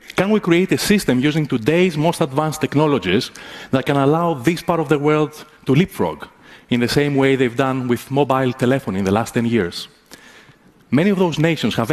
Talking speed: 195 wpm